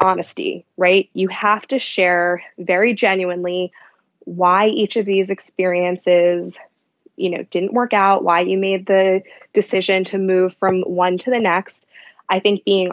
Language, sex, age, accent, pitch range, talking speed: English, female, 20-39, American, 180-205 Hz, 155 wpm